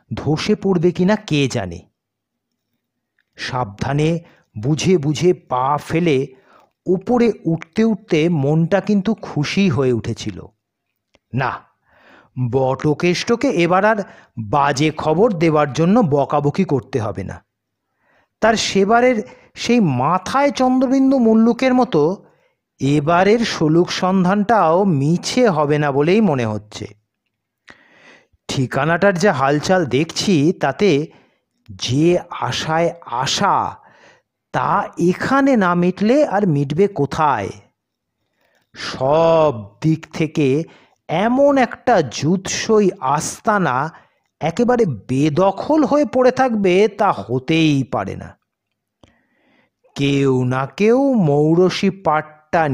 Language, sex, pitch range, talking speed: Bengali, male, 140-200 Hz, 95 wpm